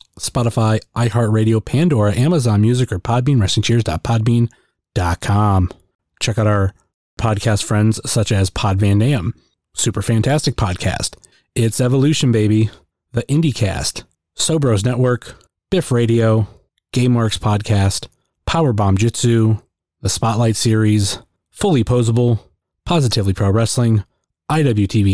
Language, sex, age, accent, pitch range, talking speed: English, male, 30-49, American, 105-130 Hz, 105 wpm